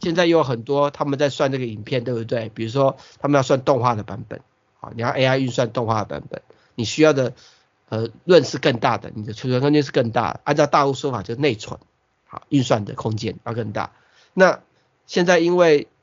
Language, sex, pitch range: Chinese, male, 120-145 Hz